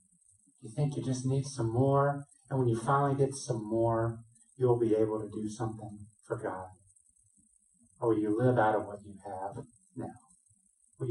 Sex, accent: male, American